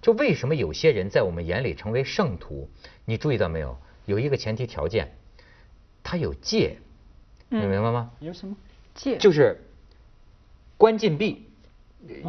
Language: Chinese